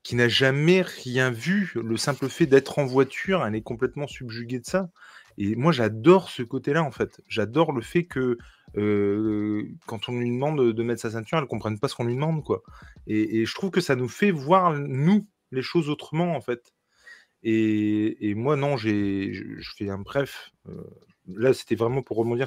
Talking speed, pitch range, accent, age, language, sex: 205 wpm, 105-140 Hz, French, 30-49, French, male